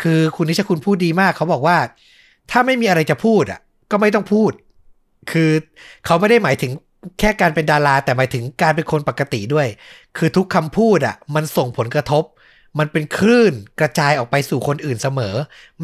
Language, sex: Thai, male